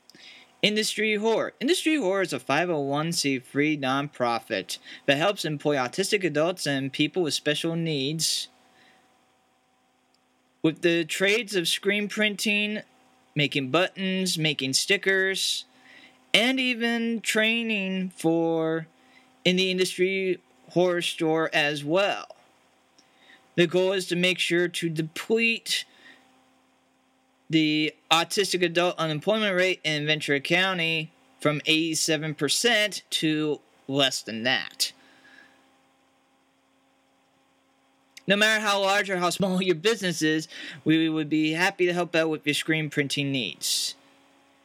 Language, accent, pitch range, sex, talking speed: English, American, 135-190 Hz, male, 115 wpm